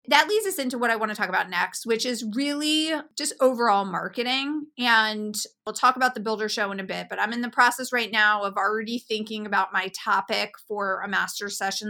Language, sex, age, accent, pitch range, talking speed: English, female, 30-49, American, 210-250 Hz, 220 wpm